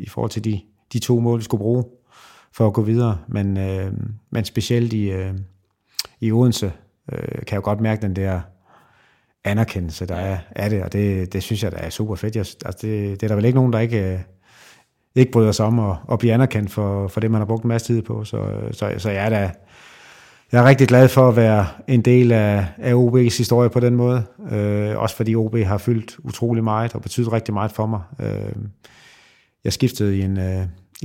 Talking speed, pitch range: 225 wpm, 100-120 Hz